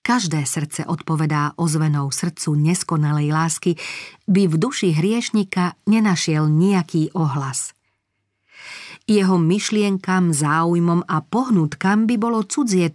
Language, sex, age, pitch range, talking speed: Slovak, female, 40-59, 150-195 Hz, 100 wpm